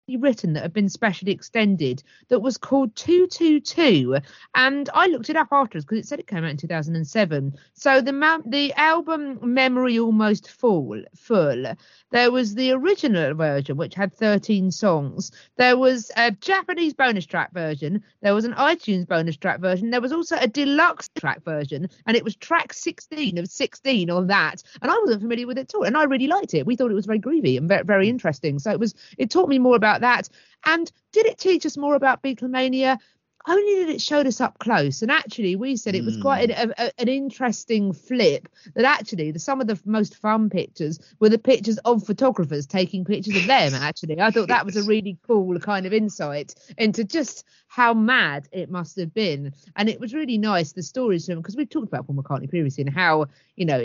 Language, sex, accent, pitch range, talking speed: English, female, British, 170-265 Hz, 205 wpm